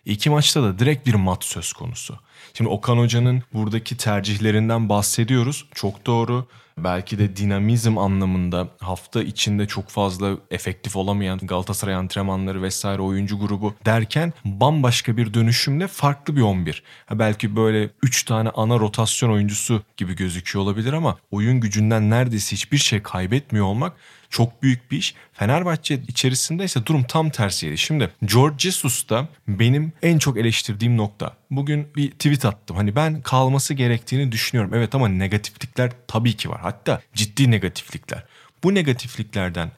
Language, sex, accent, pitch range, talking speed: Turkish, male, native, 100-135 Hz, 140 wpm